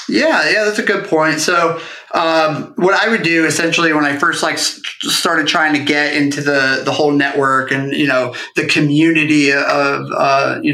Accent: American